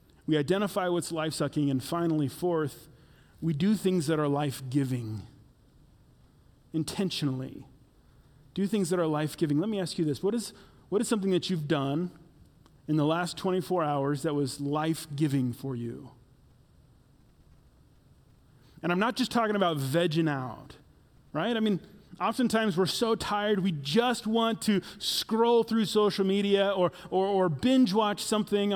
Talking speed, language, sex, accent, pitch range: 145 wpm, English, male, American, 150-195 Hz